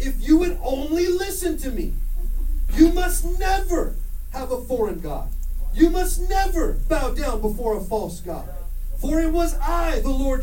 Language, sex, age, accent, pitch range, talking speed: English, male, 40-59, American, 205-315 Hz, 165 wpm